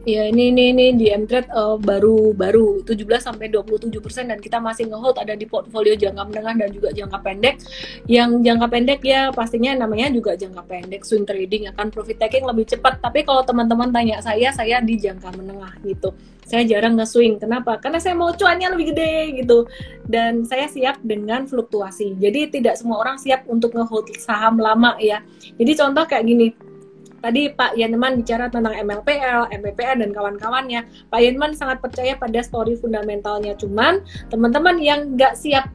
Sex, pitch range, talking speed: female, 210-250 Hz, 165 wpm